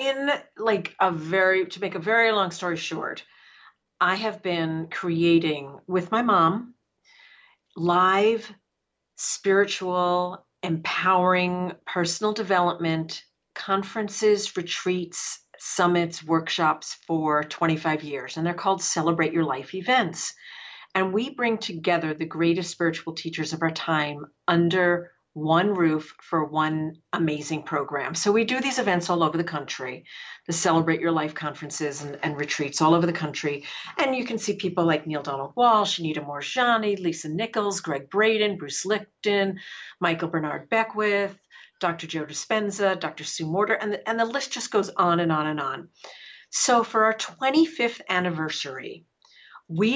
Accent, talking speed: American, 145 wpm